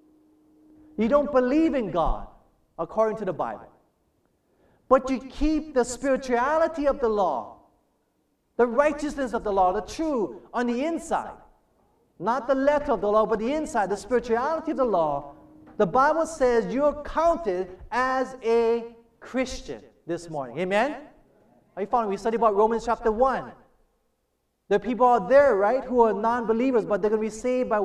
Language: English